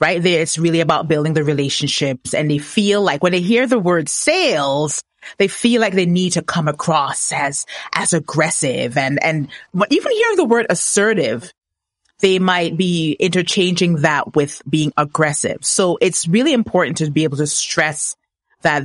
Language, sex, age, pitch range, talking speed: English, female, 30-49, 145-185 Hz, 170 wpm